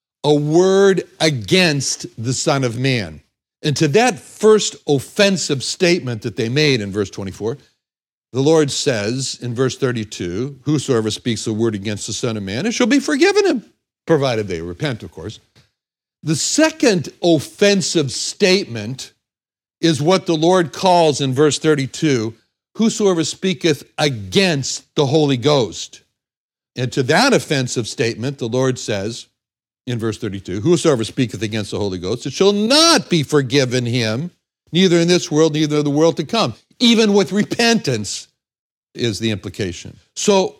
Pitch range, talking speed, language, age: 120-180 Hz, 150 wpm, English, 60-79